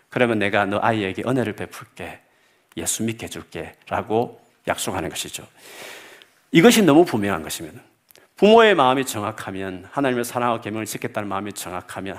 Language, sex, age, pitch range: Korean, male, 50-69, 100-145 Hz